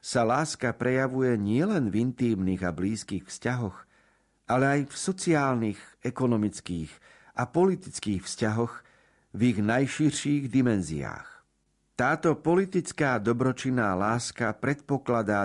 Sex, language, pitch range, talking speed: male, Slovak, 100-135 Hz, 100 wpm